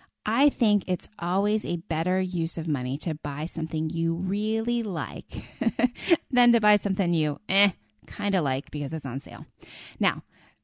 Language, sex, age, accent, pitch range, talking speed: English, female, 20-39, American, 150-225 Hz, 160 wpm